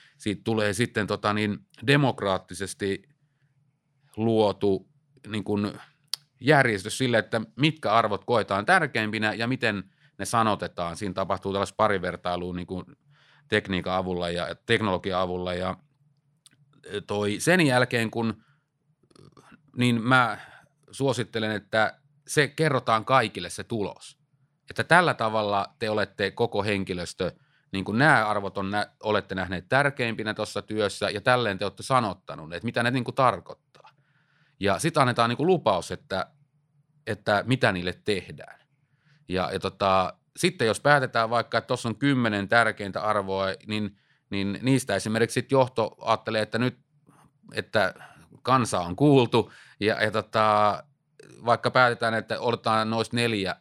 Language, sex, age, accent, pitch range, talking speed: Finnish, male, 30-49, native, 100-135 Hz, 120 wpm